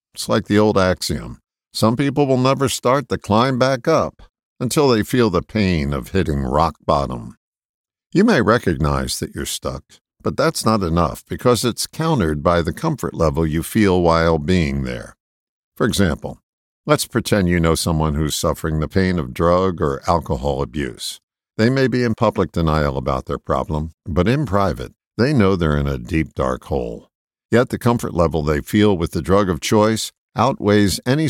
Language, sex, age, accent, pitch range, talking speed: English, male, 50-69, American, 80-110 Hz, 180 wpm